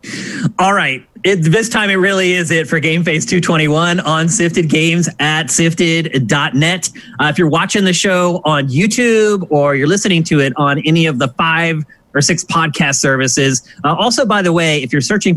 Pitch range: 145-190 Hz